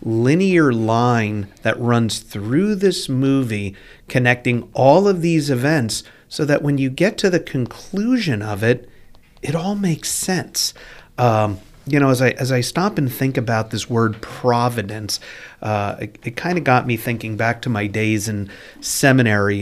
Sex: male